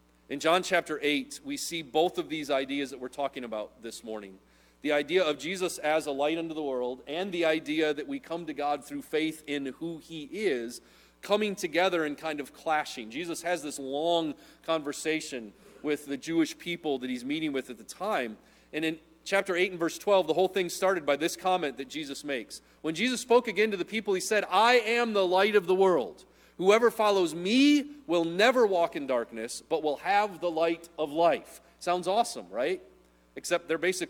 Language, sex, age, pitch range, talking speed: English, male, 30-49, 145-195 Hz, 205 wpm